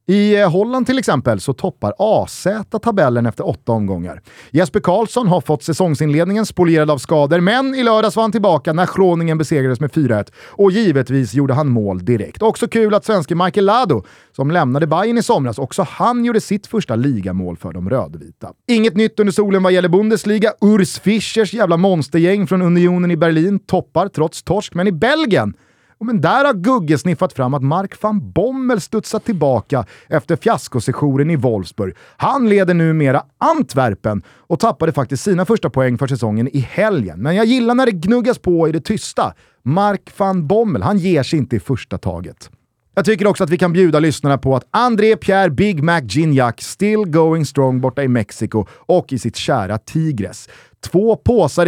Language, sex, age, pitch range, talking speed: Swedish, male, 30-49, 135-205 Hz, 180 wpm